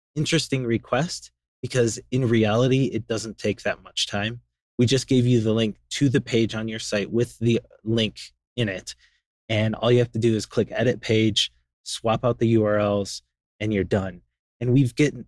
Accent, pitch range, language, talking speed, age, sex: American, 105-125 Hz, English, 190 wpm, 20-39, male